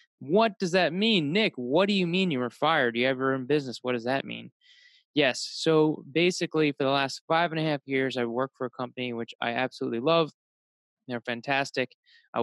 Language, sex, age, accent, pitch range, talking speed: English, male, 20-39, American, 120-155 Hz, 210 wpm